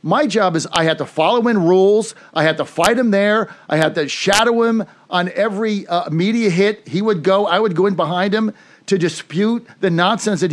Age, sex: 50-69, male